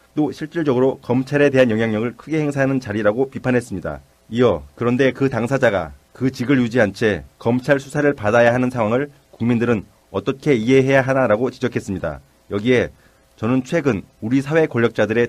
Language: Korean